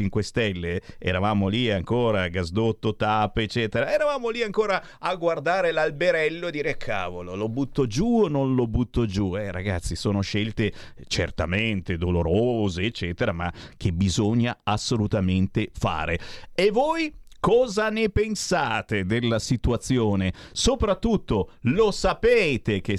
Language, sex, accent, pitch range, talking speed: Italian, male, native, 100-140 Hz, 125 wpm